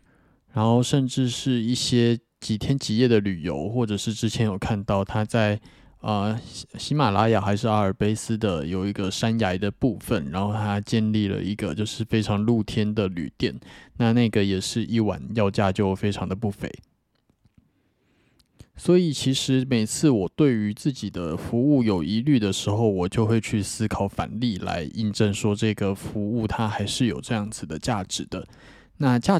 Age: 20-39